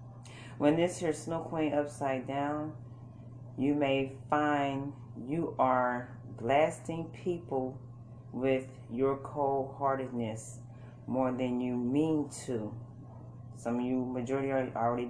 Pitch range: 120-140 Hz